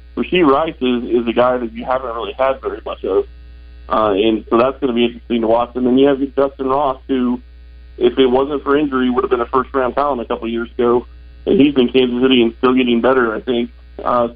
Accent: American